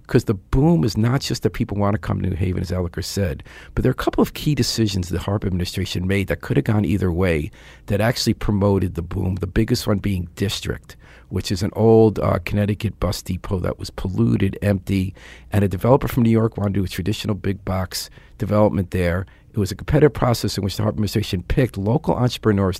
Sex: male